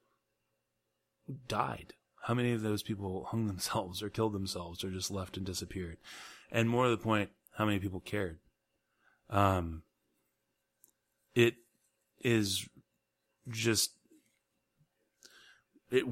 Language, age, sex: English, 30-49, male